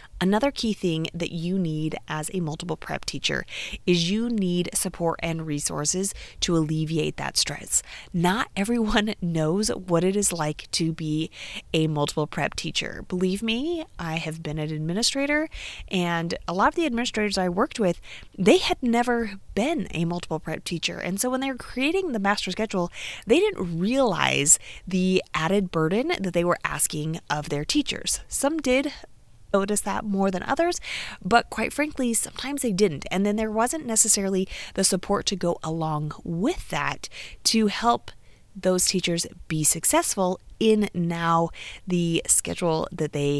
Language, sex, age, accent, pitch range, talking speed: English, female, 30-49, American, 170-235 Hz, 160 wpm